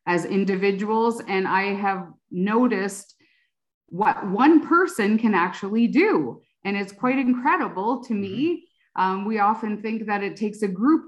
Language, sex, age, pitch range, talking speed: English, female, 30-49, 180-210 Hz, 145 wpm